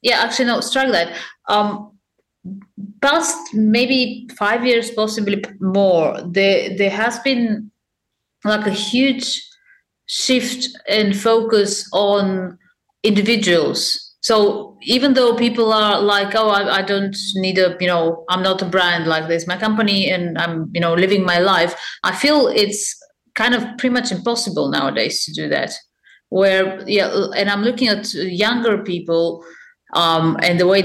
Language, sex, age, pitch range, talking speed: English, female, 30-49, 175-220 Hz, 150 wpm